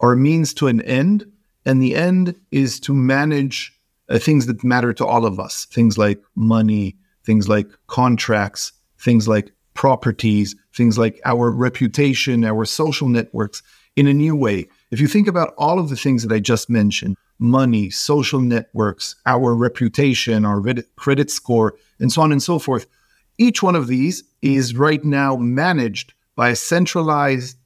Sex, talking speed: male, 165 wpm